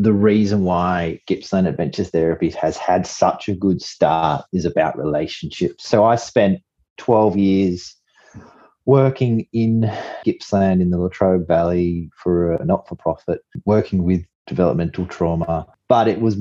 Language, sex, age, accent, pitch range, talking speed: English, male, 30-49, Australian, 80-105 Hz, 135 wpm